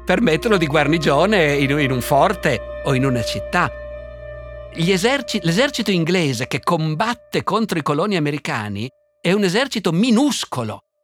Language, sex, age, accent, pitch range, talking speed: Italian, male, 50-69, native, 130-190 Hz, 130 wpm